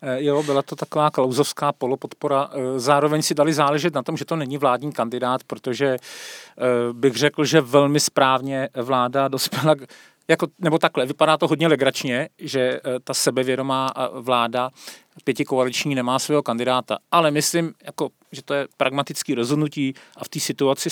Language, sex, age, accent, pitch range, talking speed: Czech, male, 40-59, native, 120-145 Hz, 150 wpm